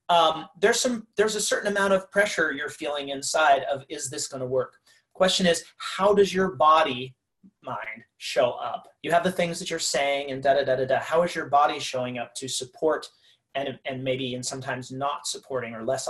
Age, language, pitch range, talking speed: 30-49, English, 130-170 Hz, 195 wpm